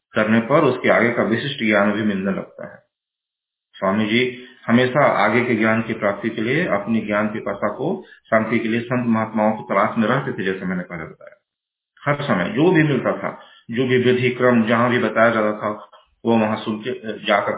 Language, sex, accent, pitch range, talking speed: Hindi, male, native, 105-125 Hz, 210 wpm